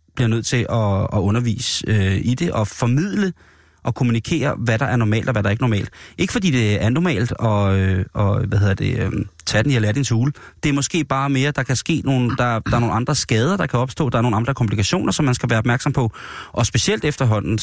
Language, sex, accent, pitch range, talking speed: Danish, male, native, 105-135 Hz, 240 wpm